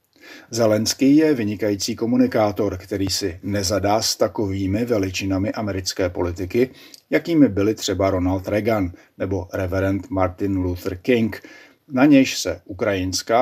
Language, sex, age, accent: Czech, male, 50-69, native